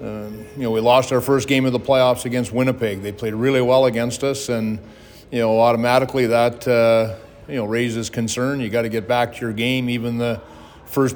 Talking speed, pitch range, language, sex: 215 wpm, 115-125 Hz, English, male